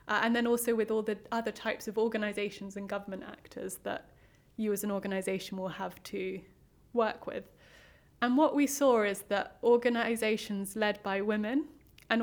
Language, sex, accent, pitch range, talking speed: English, female, British, 195-230 Hz, 170 wpm